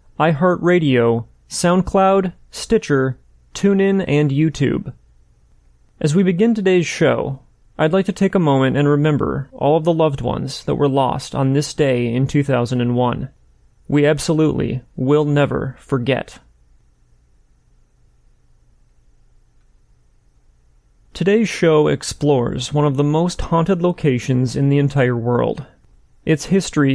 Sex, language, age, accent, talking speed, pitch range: male, English, 30-49, American, 115 wpm, 130-160 Hz